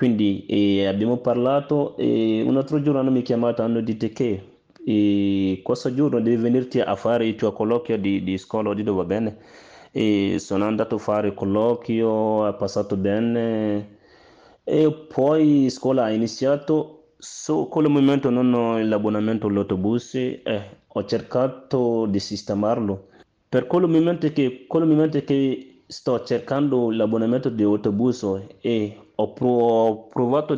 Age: 30-49